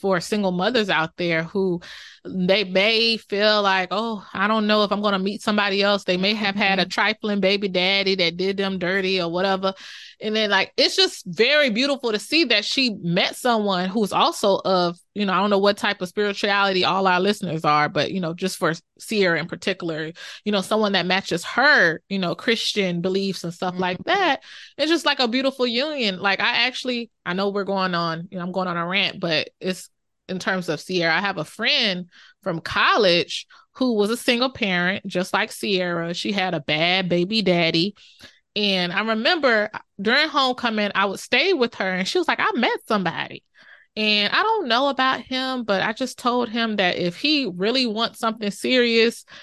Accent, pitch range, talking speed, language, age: American, 180-230 Hz, 205 wpm, English, 20-39